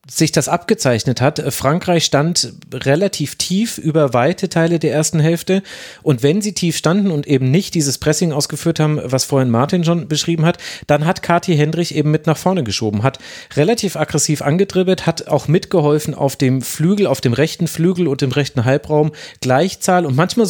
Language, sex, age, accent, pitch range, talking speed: German, male, 40-59, German, 135-170 Hz, 180 wpm